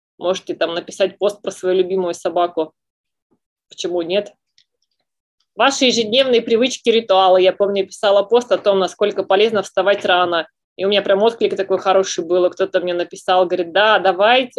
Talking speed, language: 160 wpm, Russian